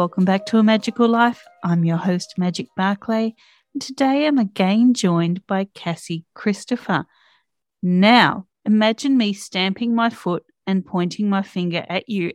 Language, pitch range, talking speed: English, 175-225 Hz, 145 wpm